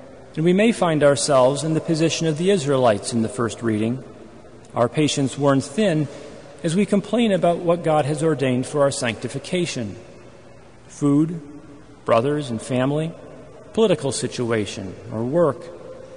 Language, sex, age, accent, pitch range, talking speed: English, male, 40-59, American, 125-175 Hz, 140 wpm